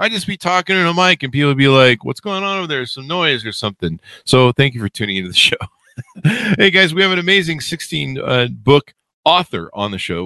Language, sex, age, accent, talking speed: English, male, 50-69, American, 250 wpm